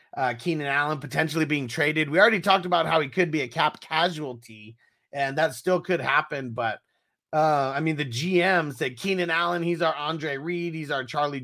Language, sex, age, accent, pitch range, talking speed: English, male, 30-49, American, 120-160 Hz, 200 wpm